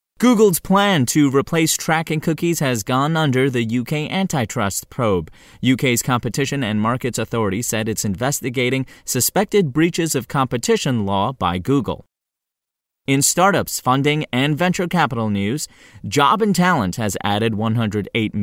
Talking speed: 130 wpm